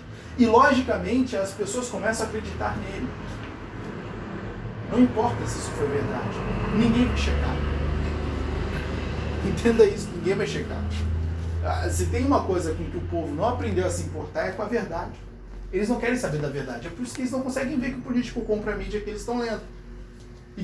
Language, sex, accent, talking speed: Portuguese, male, Brazilian, 185 wpm